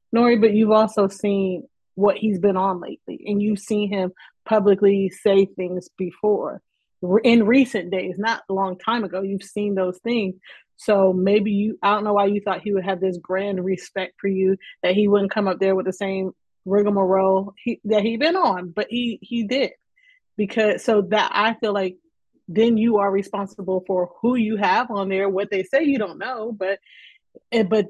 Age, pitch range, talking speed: 30-49, 195-220 Hz, 195 wpm